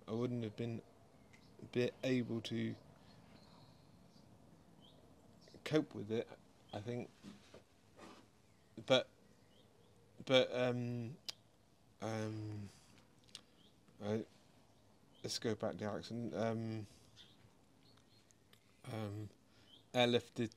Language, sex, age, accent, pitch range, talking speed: English, male, 30-49, British, 105-120 Hz, 75 wpm